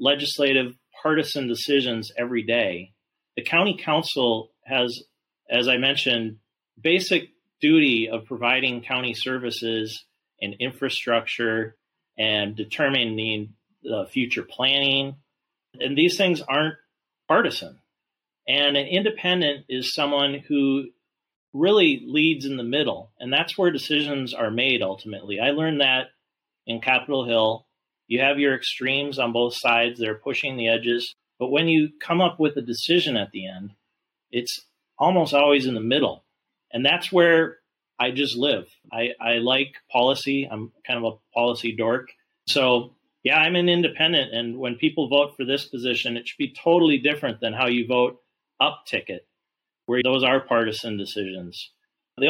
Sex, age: male, 30-49